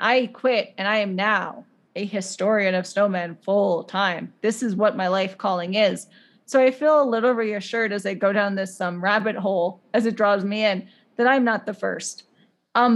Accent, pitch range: American, 195-235 Hz